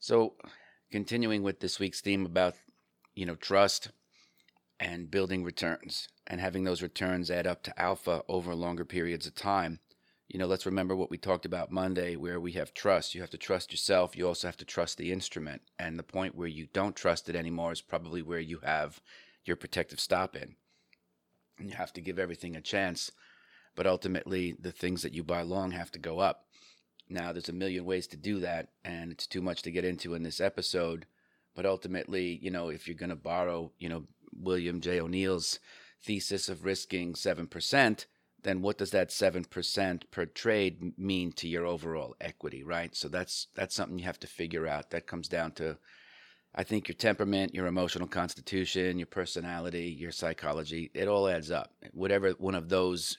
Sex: male